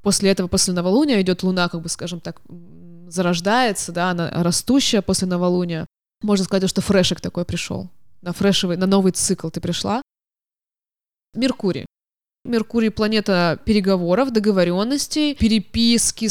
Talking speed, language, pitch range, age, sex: 125 wpm, Russian, 180-240 Hz, 20-39, female